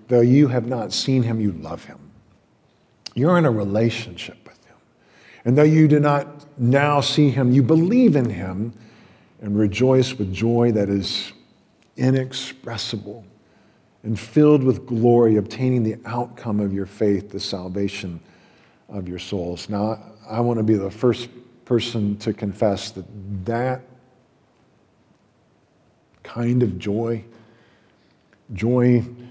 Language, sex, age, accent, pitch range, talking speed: English, male, 50-69, American, 105-135 Hz, 135 wpm